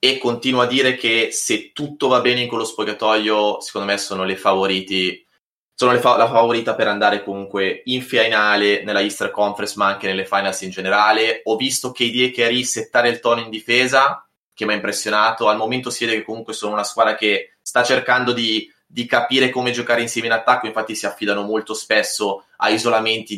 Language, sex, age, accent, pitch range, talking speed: Italian, male, 20-39, native, 110-130 Hz, 200 wpm